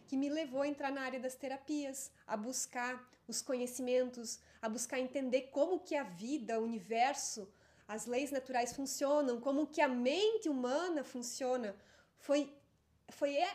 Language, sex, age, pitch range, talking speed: Portuguese, female, 30-49, 250-310 Hz, 150 wpm